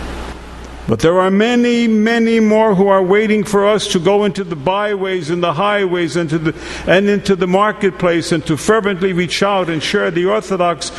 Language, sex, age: English, male, 60-79